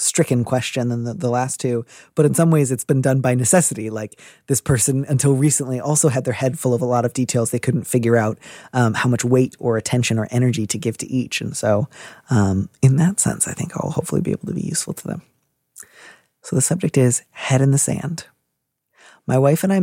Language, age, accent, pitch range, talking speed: English, 30-49, American, 120-150 Hz, 230 wpm